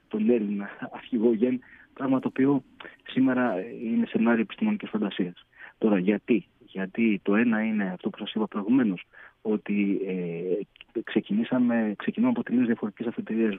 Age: 30-49